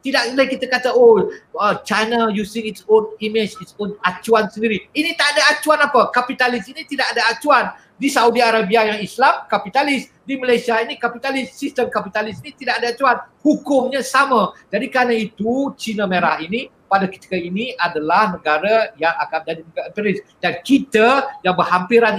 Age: 50-69